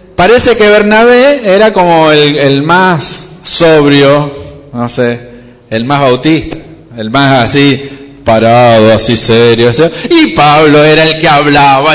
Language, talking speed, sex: Spanish, 130 wpm, male